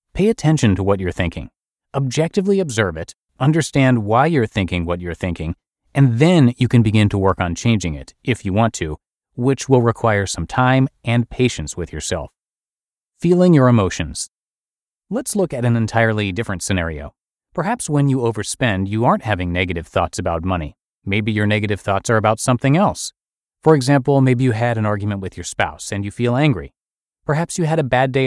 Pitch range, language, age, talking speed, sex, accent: 95-135 Hz, English, 30-49, 185 wpm, male, American